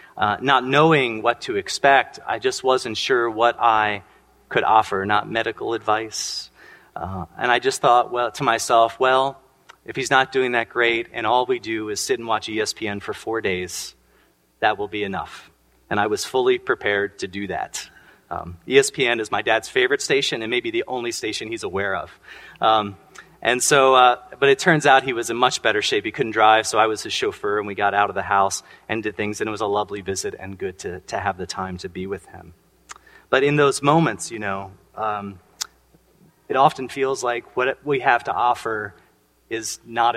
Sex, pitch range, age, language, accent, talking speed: male, 105-145 Hz, 30-49, English, American, 205 wpm